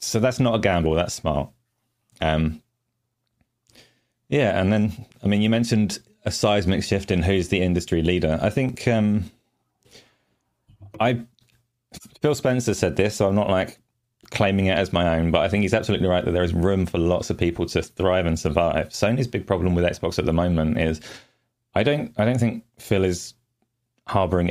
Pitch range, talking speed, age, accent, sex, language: 85-110 Hz, 185 wpm, 30-49, British, male, English